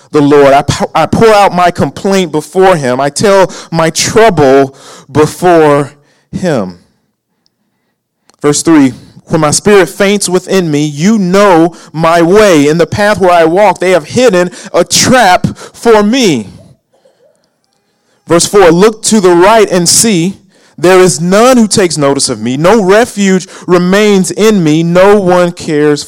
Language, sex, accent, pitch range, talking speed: English, male, American, 135-180 Hz, 150 wpm